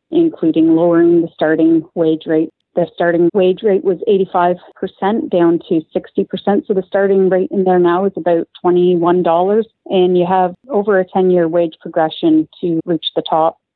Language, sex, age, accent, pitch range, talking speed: English, female, 30-49, American, 165-190 Hz, 160 wpm